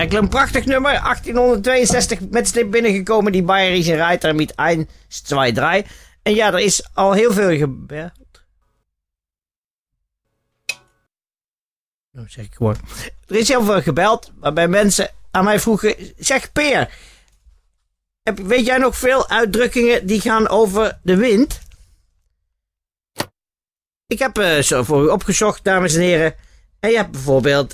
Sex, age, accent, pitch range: male, 40-59, Dutch, 150-235 Hz